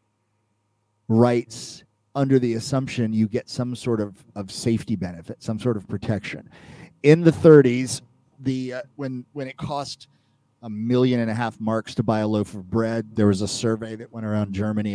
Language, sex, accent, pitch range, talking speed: English, male, American, 105-130 Hz, 180 wpm